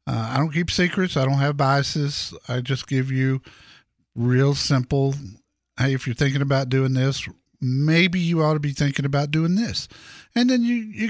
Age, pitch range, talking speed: 50-69, 125-155 Hz, 190 wpm